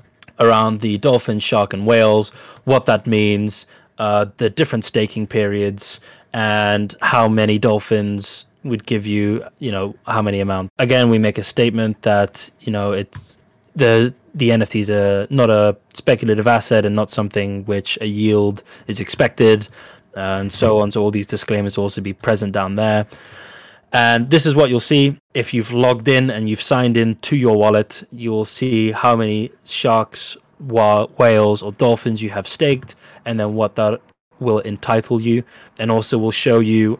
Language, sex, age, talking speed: English, male, 20-39, 170 wpm